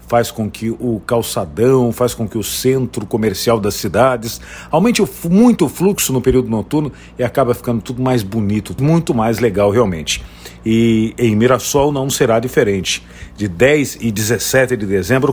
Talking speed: 165 wpm